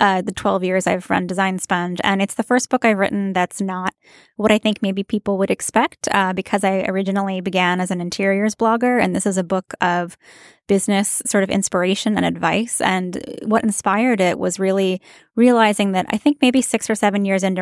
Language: English